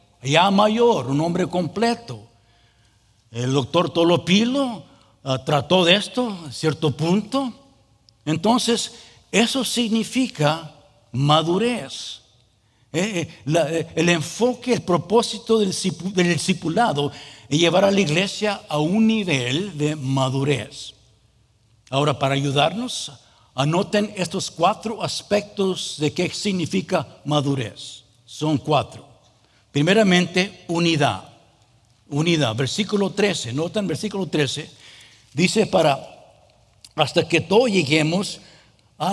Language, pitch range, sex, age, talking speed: English, 135-195 Hz, male, 60-79, 95 wpm